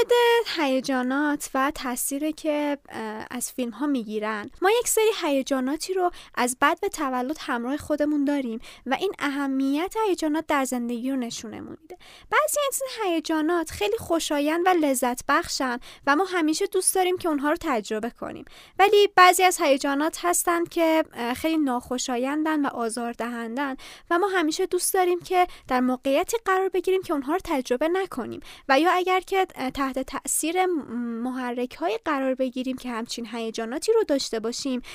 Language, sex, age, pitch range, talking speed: Persian, female, 20-39, 255-355 Hz, 155 wpm